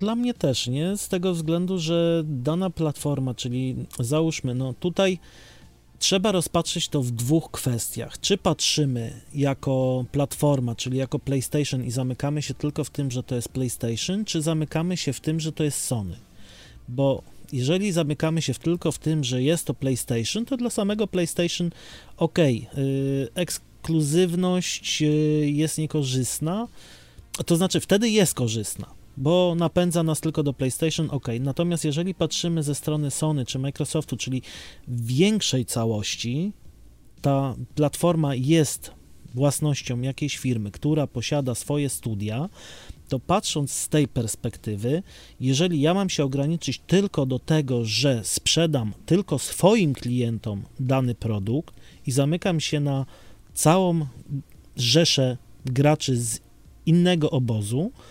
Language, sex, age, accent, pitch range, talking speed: Polish, male, 30-49, native, 125-165 Hz, 135 wpm